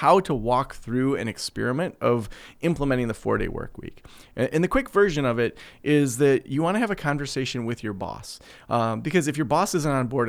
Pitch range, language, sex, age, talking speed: 115-150 Hz, English, male, 30-49, 210 wpm